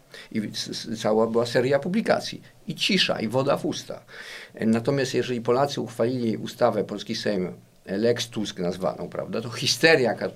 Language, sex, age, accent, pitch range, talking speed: Polish, male, 50-69, native, 105-130 Hz, 145 wpm